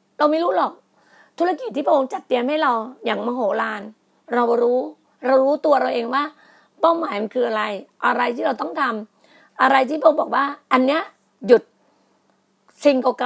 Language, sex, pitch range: Thai, female, 235-300 Hz